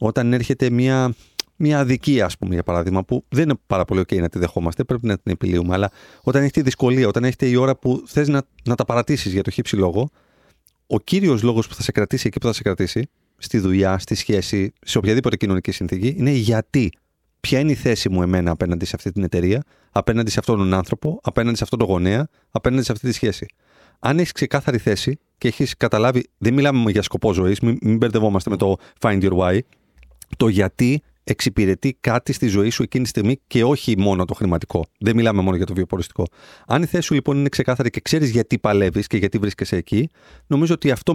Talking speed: 215 wpm